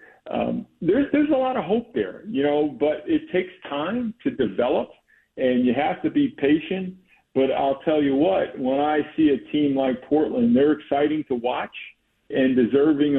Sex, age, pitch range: male, 50-69, 120-160 Hz